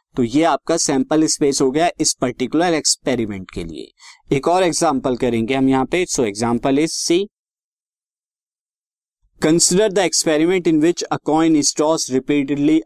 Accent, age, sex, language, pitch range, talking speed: native, 50-69, male, Hindi, 140-190 Hz, 140 wpm